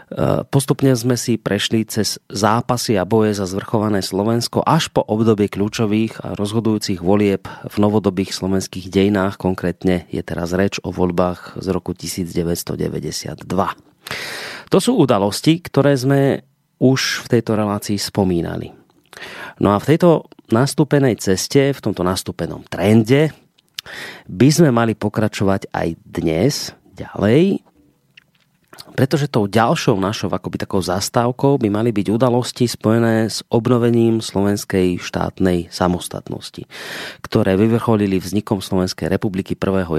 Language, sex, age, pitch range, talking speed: Slovak, male, 30-49, 95-120 Hz, 120 wpm